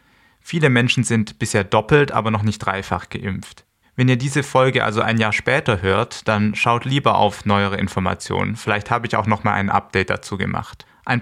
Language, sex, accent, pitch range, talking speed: German, male, German, 105-130 Hz, 185 wpm